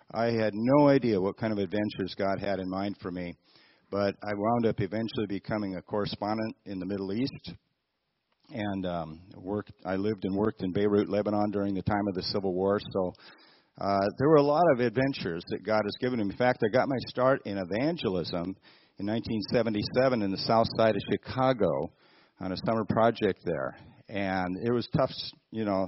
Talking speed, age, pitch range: 190 wpm, 50-69, 95-120 Hz